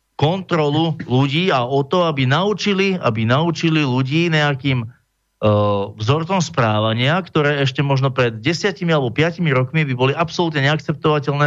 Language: Slovak